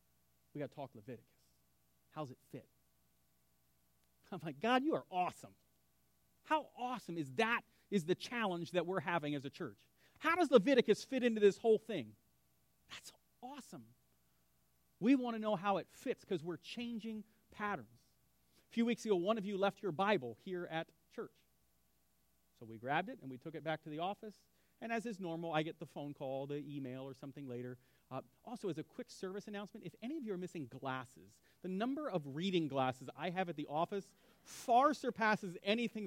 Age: 40-59